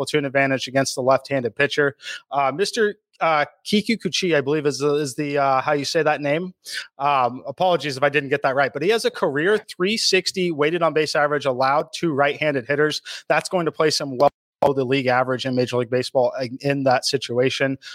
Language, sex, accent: English, male, American